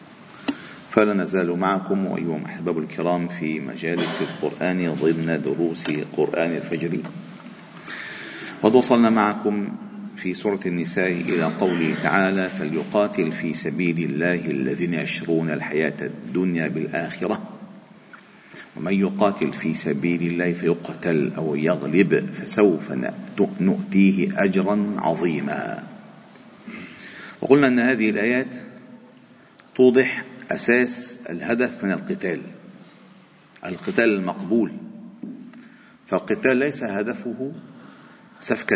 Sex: male